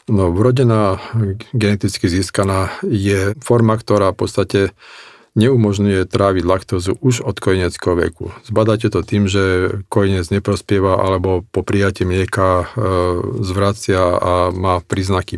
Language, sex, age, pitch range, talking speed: Slovak, male, 40-59, 90-105 Hz, 120 wpm